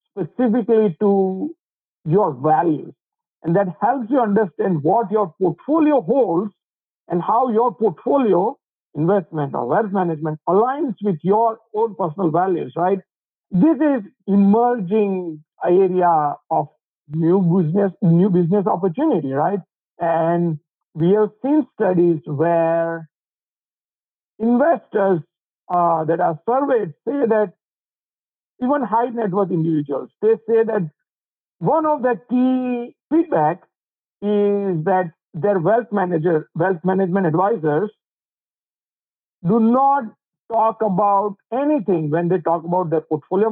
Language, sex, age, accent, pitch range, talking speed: English, male, 50-69, Indian, 170-230 Hz, 115 wpm